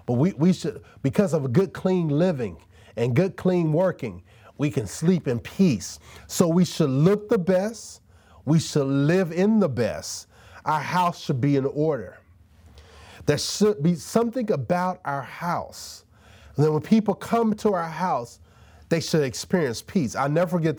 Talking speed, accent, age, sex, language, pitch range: 165 wpm, American, 30-49, male, English, 105-165 Hz